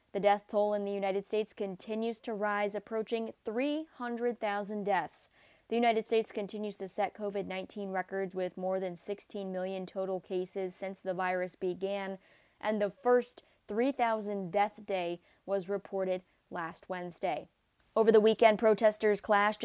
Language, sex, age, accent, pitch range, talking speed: English, female, 20-39, American, 195-235 Hz, 145 wpm